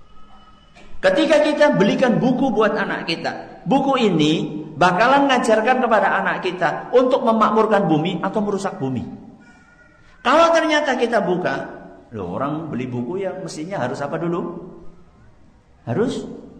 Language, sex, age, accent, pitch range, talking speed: Indonesian, male, 50-69, native, 155-255 Hz, 120 wpm